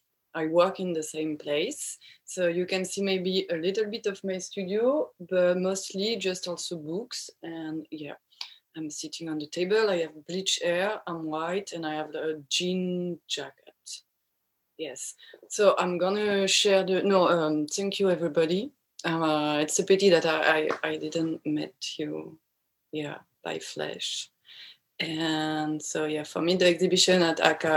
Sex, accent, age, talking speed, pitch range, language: female, French, 20-39, 160 wpm, 150-185 Hz, English